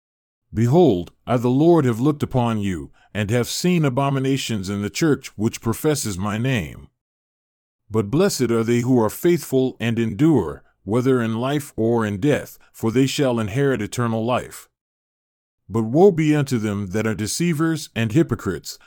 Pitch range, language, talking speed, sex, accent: 110-145 Hz, English, 160 wpm, male, American